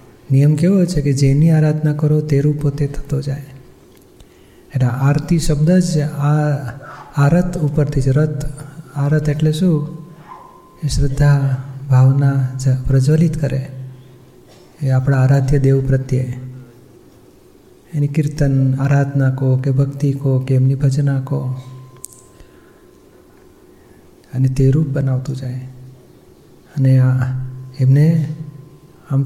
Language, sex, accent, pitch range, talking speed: Gujarati, male, native, 130-145 Hz, 85 wpm